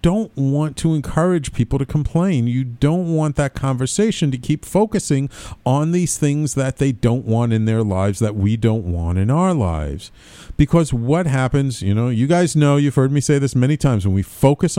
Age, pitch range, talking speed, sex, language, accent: 50-69, 110-160 Hz, 205 wpm, male, English, American